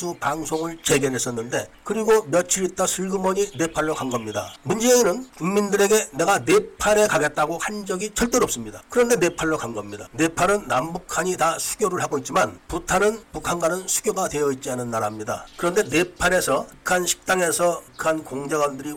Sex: male